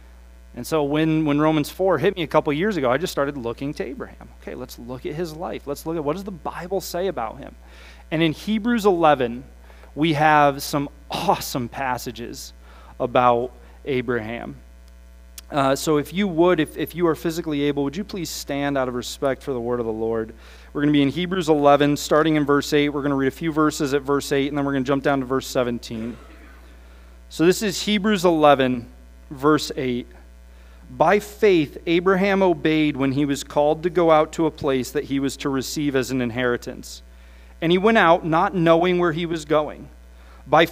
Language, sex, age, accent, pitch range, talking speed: English, male, 30-49, American, 125-170 Hz, 205 wpm